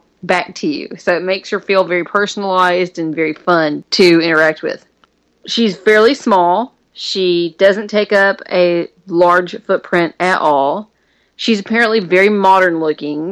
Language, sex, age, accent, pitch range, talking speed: English, female, 30-49, American, 165-200 Hz, 150 wpm